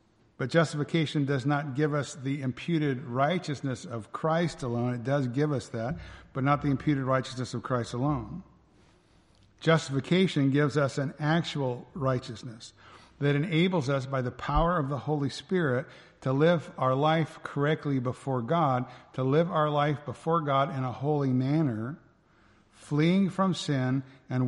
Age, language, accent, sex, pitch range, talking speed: 50-69, English, American, male, 130-155 Hz, 150 wpm